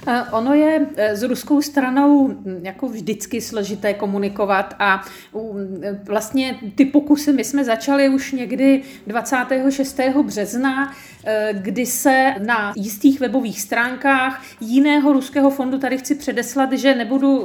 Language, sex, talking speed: Czech, female, 115 wpm